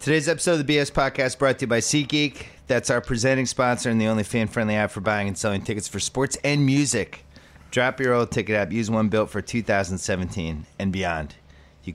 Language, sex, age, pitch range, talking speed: English, male, 30-49, 85-115 Hz, 210 wpm